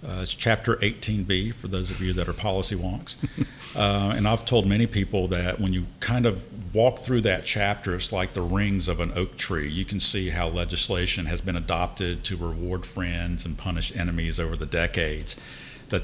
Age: 50-69